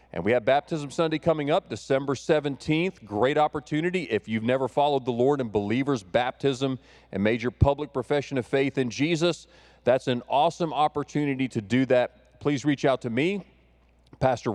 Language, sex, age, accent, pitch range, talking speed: English, male, 40-59, American, 120-155 Hz, 175 wpm